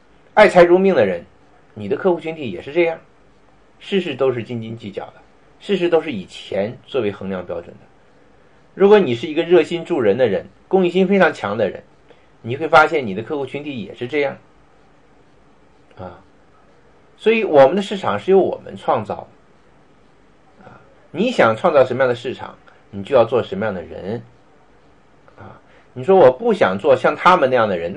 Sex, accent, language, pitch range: male, native, Chinese, 115-180 Hz